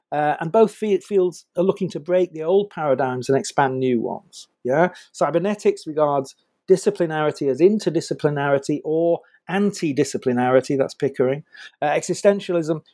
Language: English